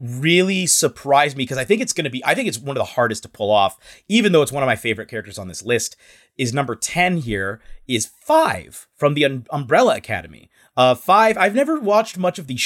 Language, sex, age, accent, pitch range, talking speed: English, male, 30-49, American, 115-165 Hz, 230 wpm